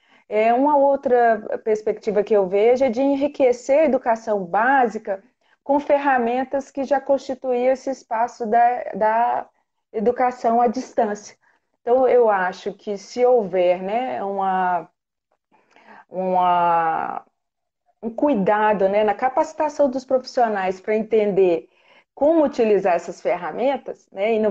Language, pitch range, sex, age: English, 200-265 Hz, female, 40-59